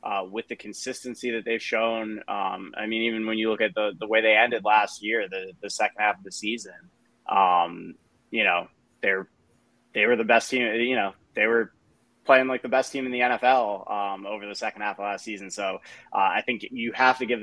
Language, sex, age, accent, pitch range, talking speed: English, male, 20-39, American, 110-130 Hz, 225 wpm